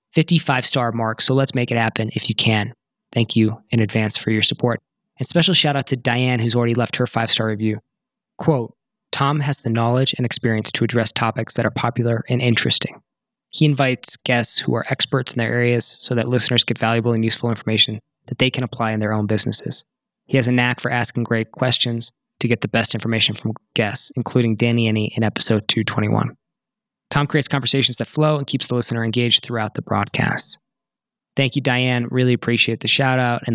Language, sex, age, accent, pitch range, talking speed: English, male, 20-39, American, 115-135 Hz, 200 wpm